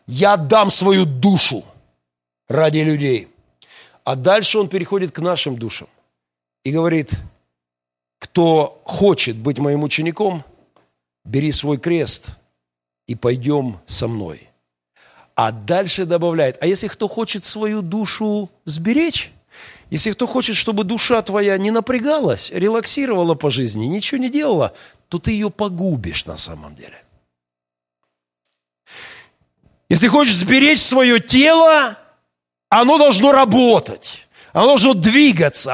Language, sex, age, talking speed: Russian, male, 50-69, 115 wpm